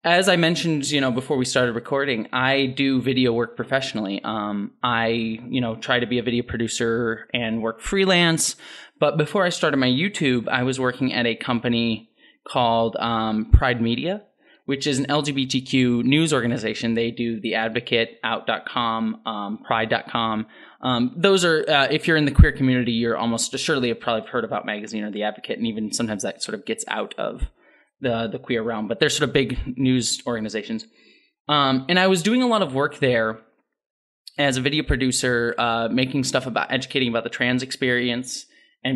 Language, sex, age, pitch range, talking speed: English, male, 20-39, 115-140 Hz, 185 wpm